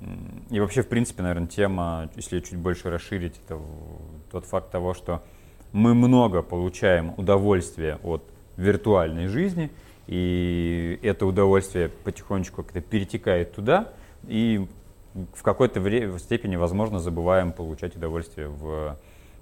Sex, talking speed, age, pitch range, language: male, 115 wpm, 30-49, 85-105 Hz, Russian